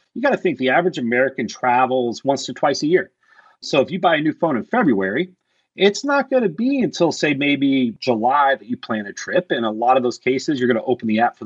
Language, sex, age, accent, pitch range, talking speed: English, male, 30-49, American, 120-170 Hz, 255 wpm